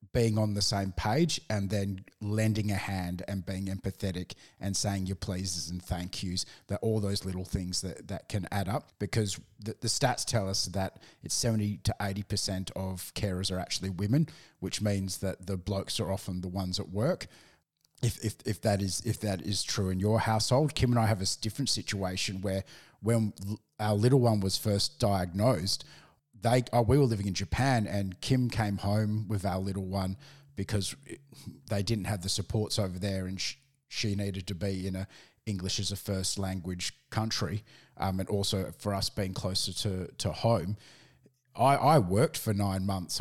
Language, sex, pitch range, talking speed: English, male, 95-110 Hz, 185 wpm